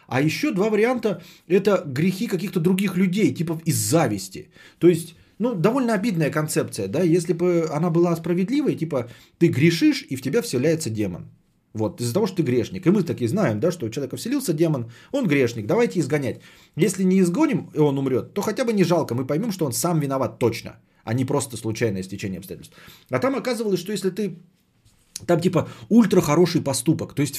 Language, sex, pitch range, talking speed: Bulgarian, male, 125-180 Hz, 195 wpm